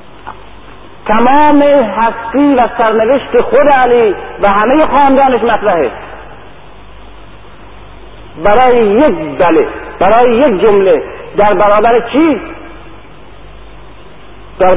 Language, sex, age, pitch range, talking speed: Persian, male, 50-69, 155-245 Hz, 80 wpm